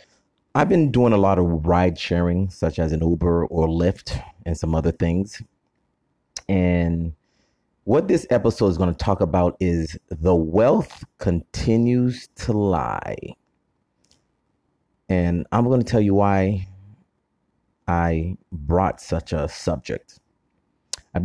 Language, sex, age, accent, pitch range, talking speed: English, male, 30-49, American, 85-100 Hz, 130 wpm